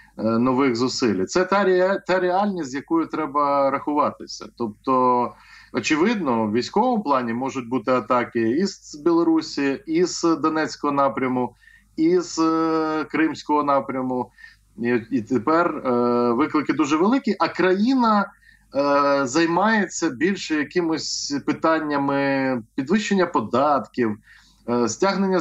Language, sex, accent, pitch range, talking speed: Ukrainian, male, native, 130-195 Hz, 90 wpm